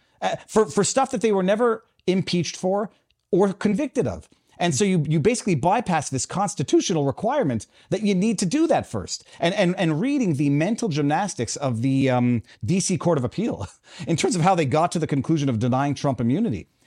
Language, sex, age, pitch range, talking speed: English, male, 40-59, 140-190 Hz, 200 wpm